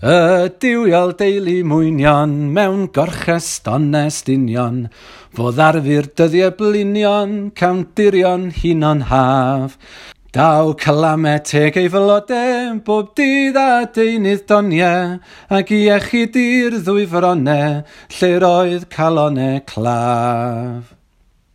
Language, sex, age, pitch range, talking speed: English, male, 40-59, 145-200 Hz, 80 wpm